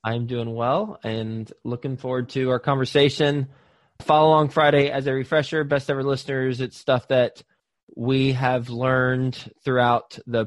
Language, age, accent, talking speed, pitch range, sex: English, 20-39, American, 150 wpm, 110-135 Hz, male